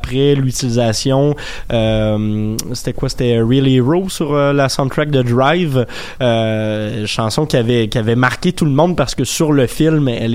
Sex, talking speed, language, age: male, 195 wpm, French, 20-39